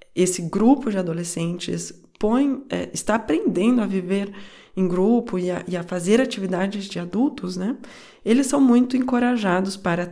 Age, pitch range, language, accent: 20-39, 185-235 Hz, Portuguese, Brazilian